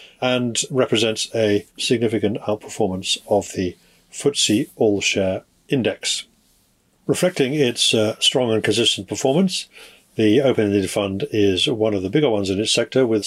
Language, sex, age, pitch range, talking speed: English, male, 50-69, 100-125 Hz, 140 wpm